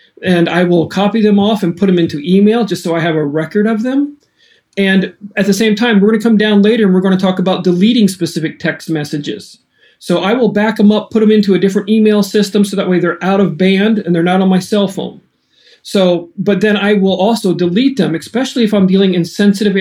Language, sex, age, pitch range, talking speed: English, male, 40-59, 170-210 Hz, 245 wpm